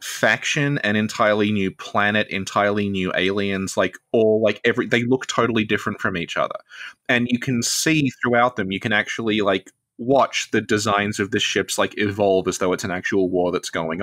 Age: 20-39